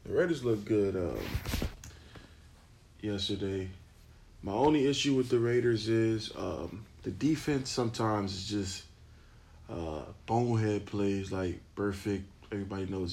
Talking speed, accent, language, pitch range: 120 wpm, American, English, 90-110 Hz